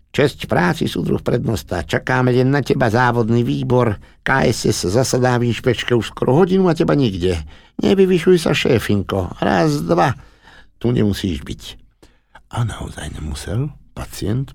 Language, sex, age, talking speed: Slovak, male, 60-79, 130 wpm